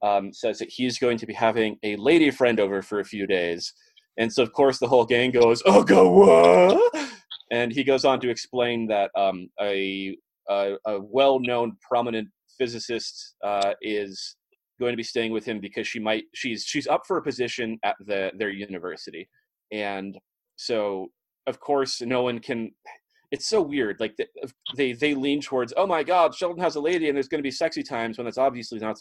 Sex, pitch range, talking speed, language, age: male, 105-135 Hz, 195 wpm, English, 30-49